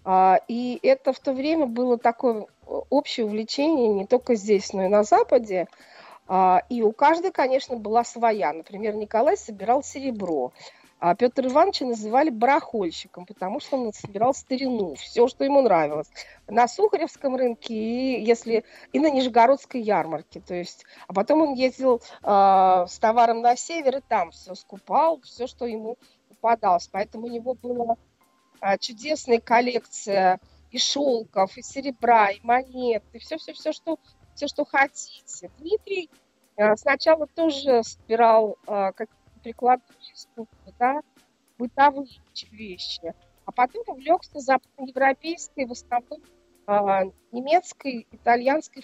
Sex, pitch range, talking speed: female, 210-275 Hz, 125 wpm